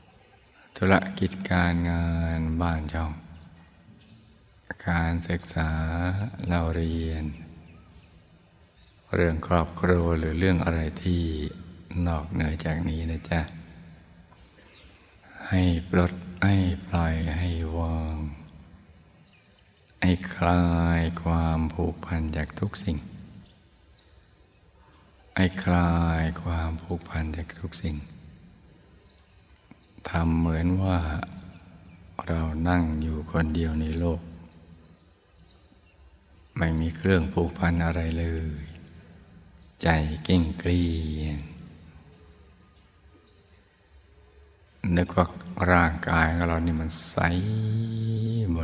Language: Thai